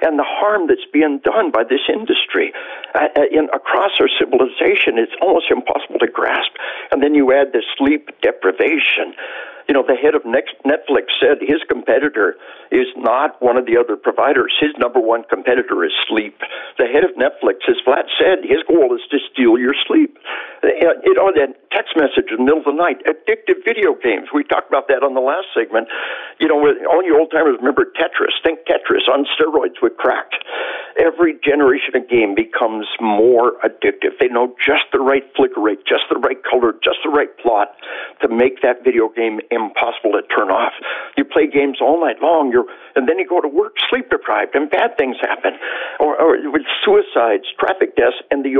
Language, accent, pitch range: English, American, 330-445 Hz